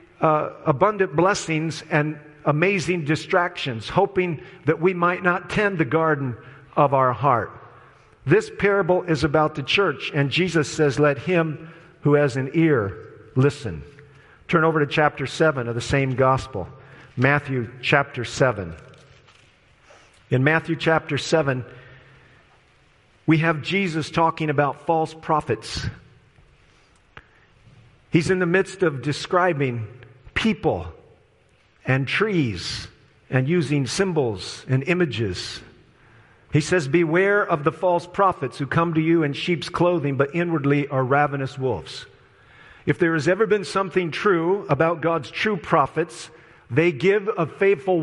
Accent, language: American, English